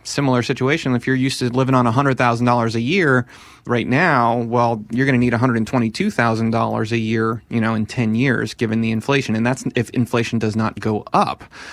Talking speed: 190 wpm